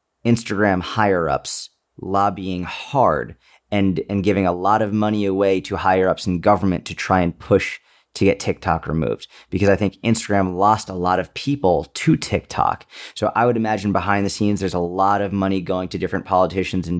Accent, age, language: American, 30-49, English